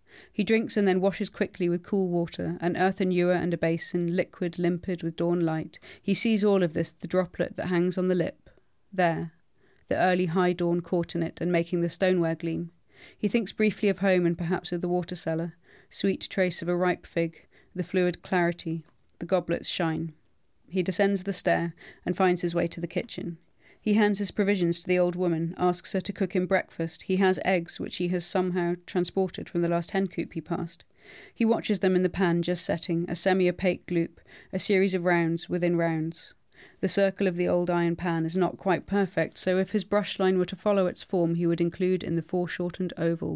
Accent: British